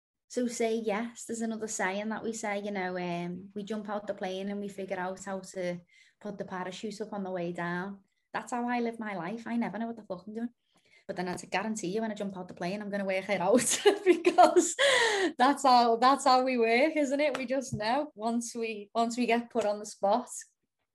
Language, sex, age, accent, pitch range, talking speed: English, female, 20-39, British, 205-255 Hz, 235 wpm